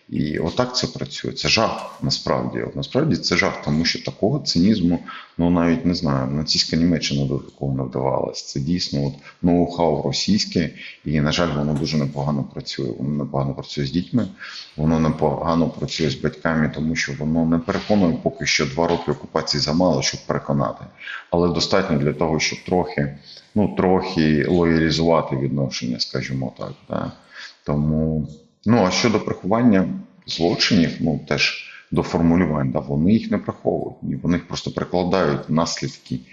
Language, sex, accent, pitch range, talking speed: Ukrainian, male, native, 70-85 Hz, 150 wpm